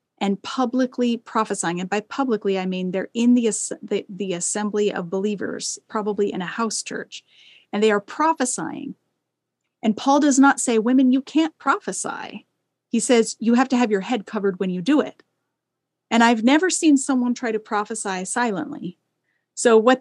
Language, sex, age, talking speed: English, female, 30-49, 175 wpm